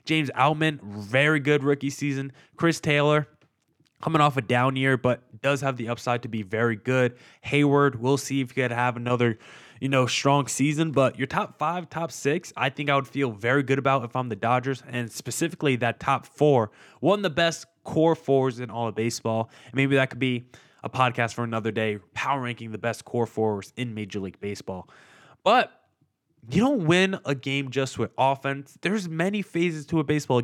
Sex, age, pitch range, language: male, 20-39, 120-160 Hz, English